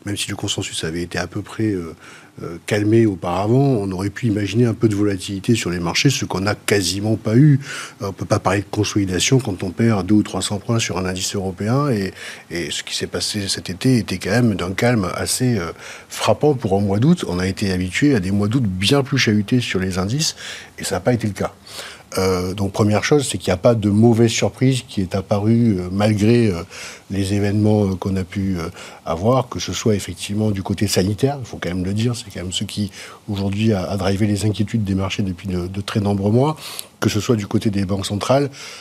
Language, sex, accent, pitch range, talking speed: French, male, French, 100-120 Hz, 235 wpm